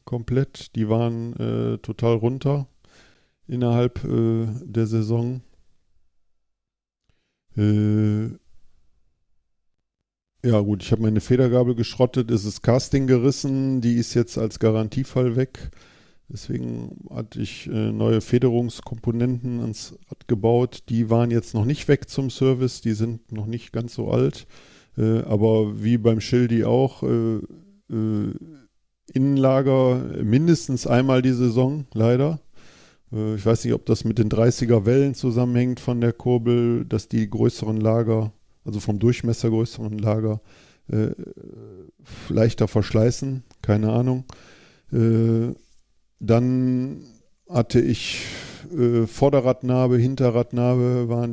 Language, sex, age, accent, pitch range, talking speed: German, male, 50-69, German, 110-125 Hz, 115 wpm